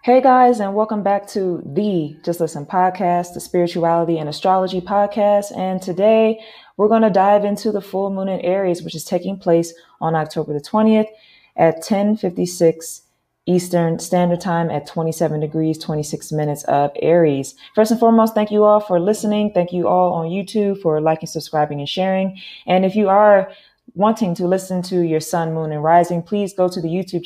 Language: English